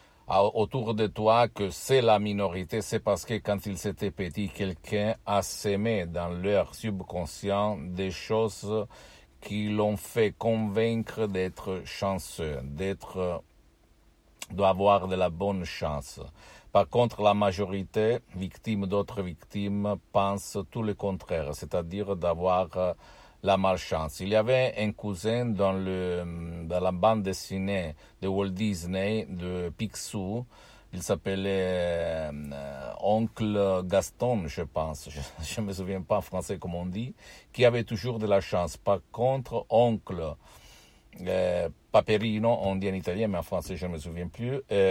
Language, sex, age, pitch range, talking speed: Italian, male, 50-69, 90-105 Hz, 140 wpm